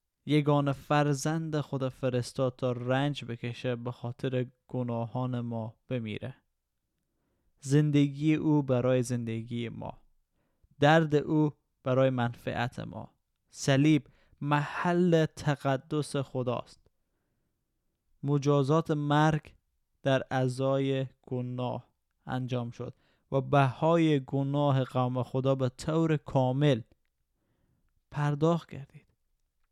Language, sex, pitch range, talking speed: Persian, male, 120-145 Hz, 90 wpm